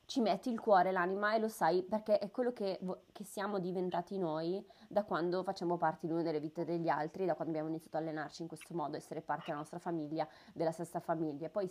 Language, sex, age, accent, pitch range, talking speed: Italian, female, 20-39, native, 165-205 Hz, 225 wpm